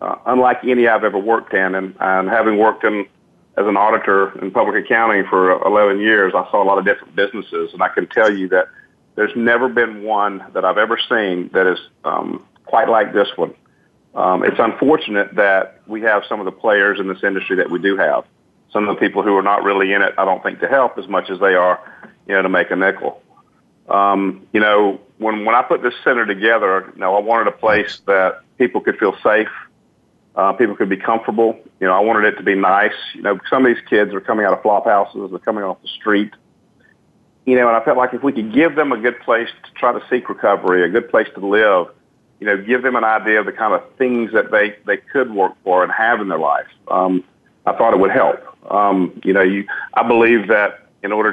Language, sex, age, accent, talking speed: English, male, 50-69, American, 235 wpm